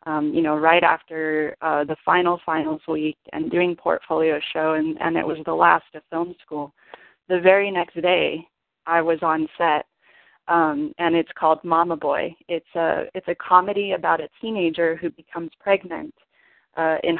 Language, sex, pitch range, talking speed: English, female, 160-180 Hz, 175 wpm